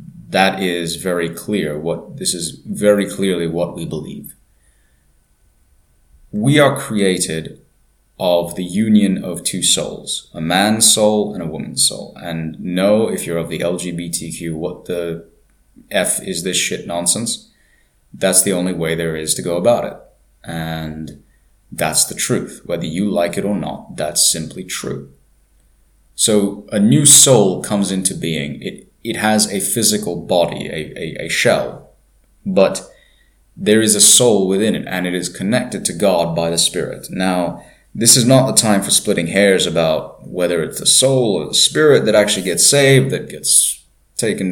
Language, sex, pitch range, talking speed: English, male, 80-105 Hz, 165 wpm